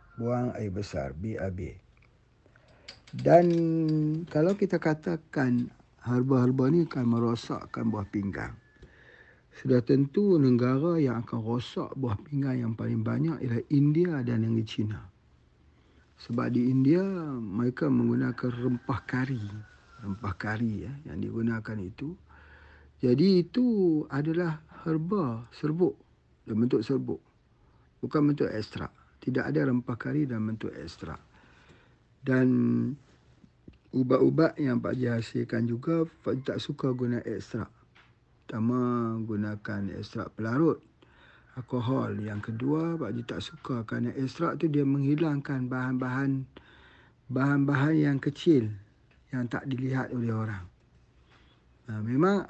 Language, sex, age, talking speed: Malay, male, 50-69, 115 wpm